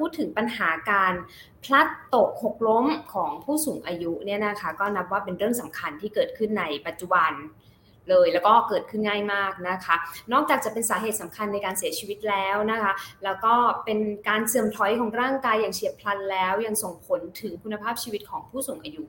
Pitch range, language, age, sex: 185-235 Hz, Thai, 20-39, female